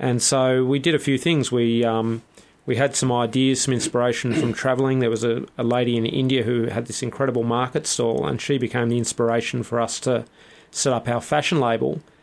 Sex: male